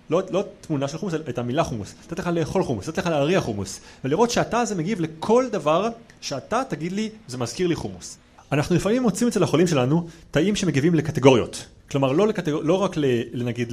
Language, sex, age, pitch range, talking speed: Hebrew, male, 30-49, 130-185 Hz, 190 wpm